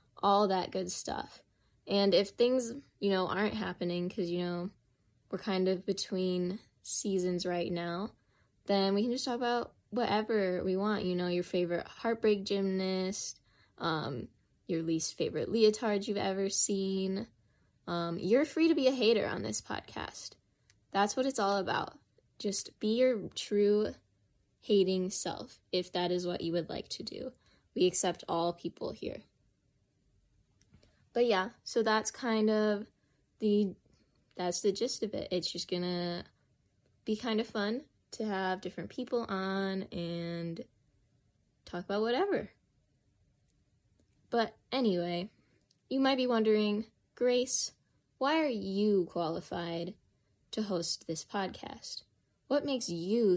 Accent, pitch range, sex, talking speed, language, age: American, 175-220 Hz, female, 140 wpm, English, 10-29